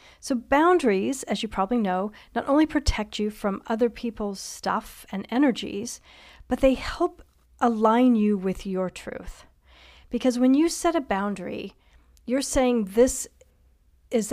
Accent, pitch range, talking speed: American, 195-240 Hz, 140 wpm